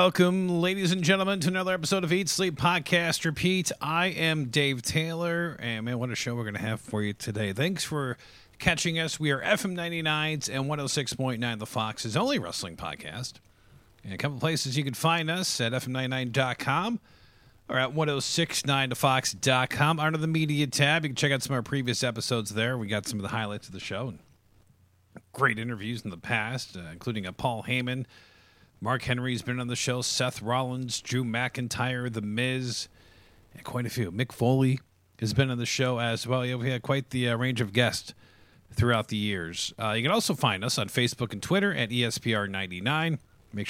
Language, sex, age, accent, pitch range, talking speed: English, male, 40-59, American, 110-150 Hz, 200 wpm